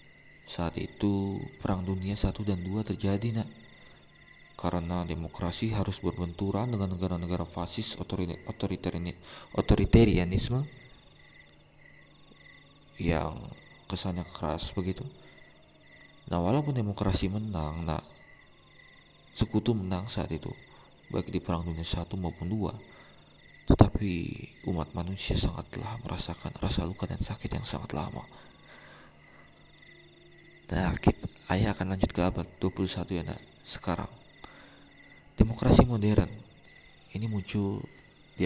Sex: male